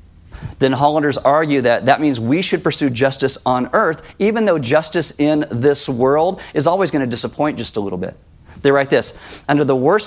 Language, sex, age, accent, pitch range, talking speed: English, male, 40-59, American, 120-150 Hz, 195 wpm